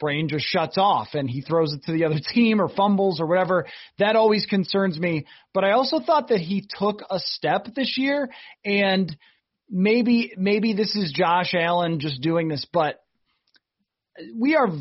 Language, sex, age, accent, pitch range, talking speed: English, male, 30-49, American, 155-205 Hz, 180 wpm